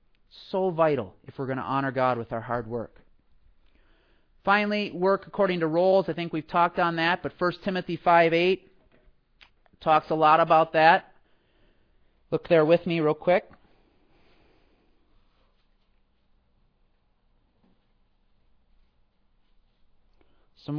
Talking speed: 115 wpm